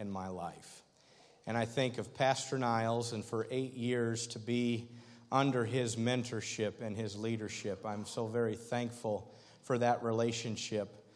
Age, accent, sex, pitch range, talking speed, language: 50-69, American, male, 115-140 Hz, 150 wpm, English